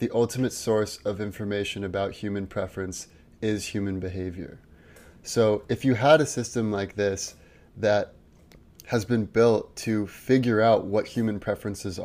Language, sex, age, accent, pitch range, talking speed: English, male, 20-39, American, 95-110 Hz, 145 wpm